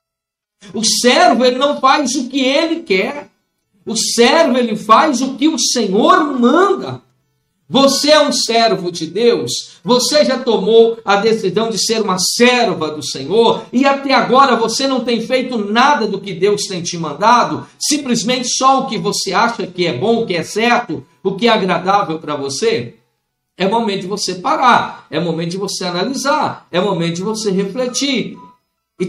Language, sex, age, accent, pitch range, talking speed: Portuguese, male, 50-69, Brazilian, 200-270 Hz, 180 wpm